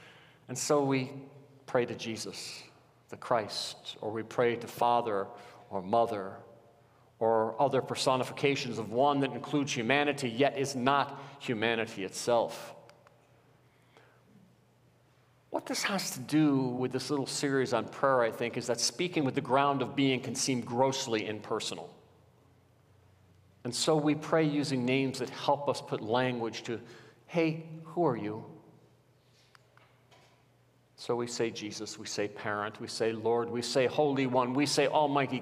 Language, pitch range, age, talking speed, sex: English, 115-140 Hz, 50-69, 145 wpm, male